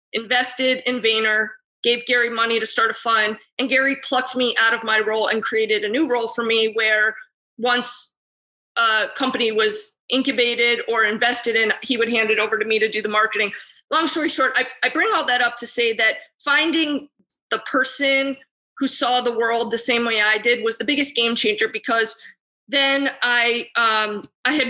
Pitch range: 220-250 Hz